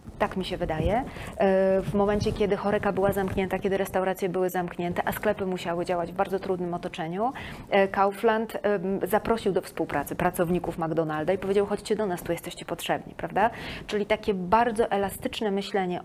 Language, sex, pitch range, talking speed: Polish, female, 180-210 Hz, 155 wpm